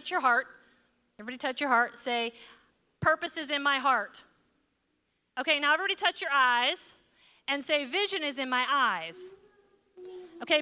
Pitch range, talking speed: 275-355 Hz, 145 wpm